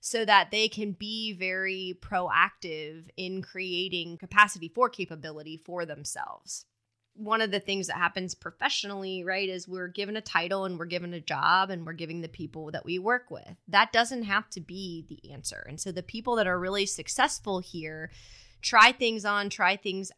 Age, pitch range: 20-39, 170-205 Hz